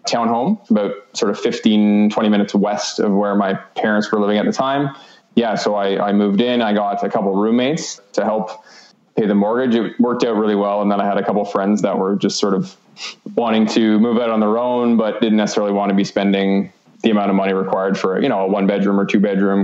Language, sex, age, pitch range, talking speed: English, male, 20-39, 100-110 Hz, 245 wpm